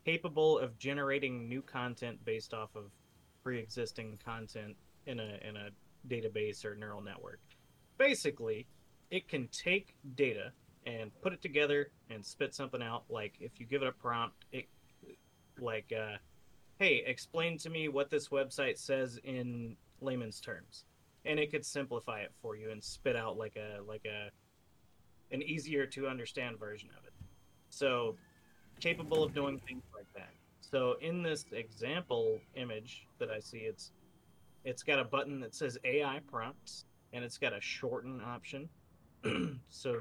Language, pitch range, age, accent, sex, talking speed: English, 115-150 Hz, 30-49, American, male, 155 wpm